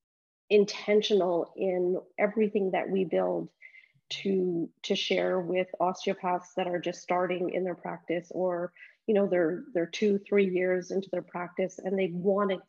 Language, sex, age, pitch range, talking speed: English, female, 30-49, 175-205 Hz, 155 wpm